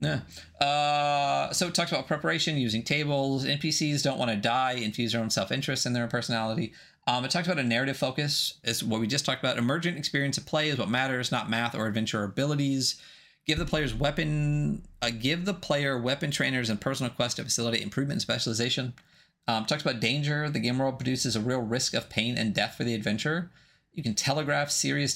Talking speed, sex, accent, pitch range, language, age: 210 wpm, male, American, 115-145 Hz, English, 30-49